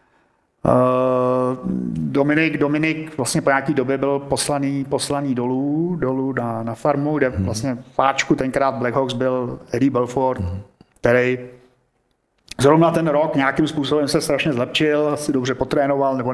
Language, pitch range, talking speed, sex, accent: Czech, 125-150 Hz, 130 wpm, male, native